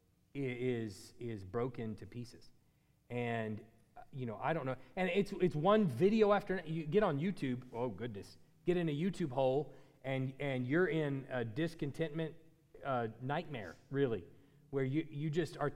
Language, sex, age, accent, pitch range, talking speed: English, male, 30-49, American, 150-230 Hz, 160 wpm